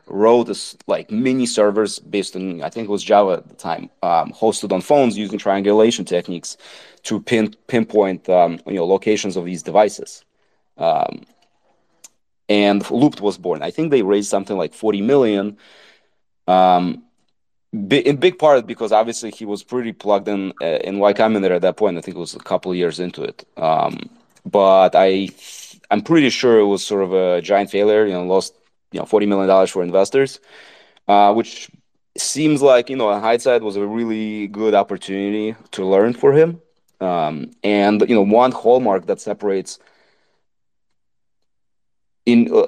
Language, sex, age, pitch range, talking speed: English, male, 20-39, 95-115 Hz, 175 wpm